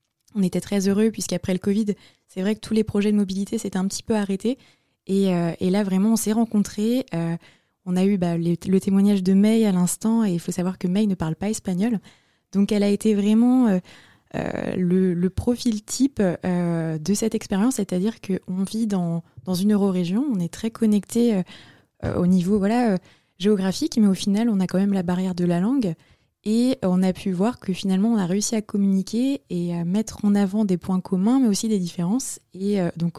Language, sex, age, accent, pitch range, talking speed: French, female, 20-39, French, 185-220 Hz, 215 wpm